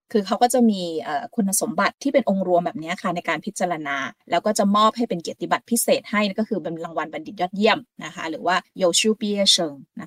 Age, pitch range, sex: 20-39, 180-235 Hz, female